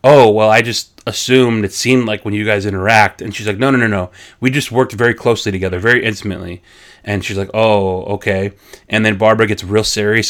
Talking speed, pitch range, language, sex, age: 220 wpm, 100-120 Hz, English, male, 30-49